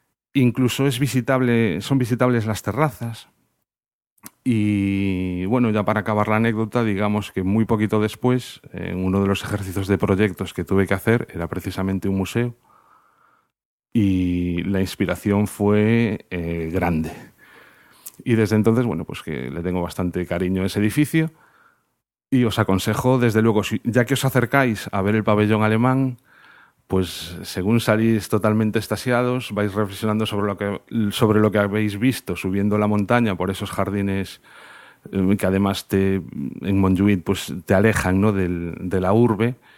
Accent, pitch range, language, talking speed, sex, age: Spanish, 95-110 Hz, Spanish, 155 wpm, male, 40-59